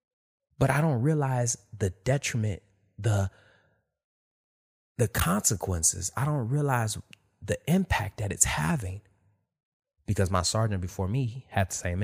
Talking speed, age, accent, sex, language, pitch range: 125 wpm, 20-39, American, male, English, 95-120 Hz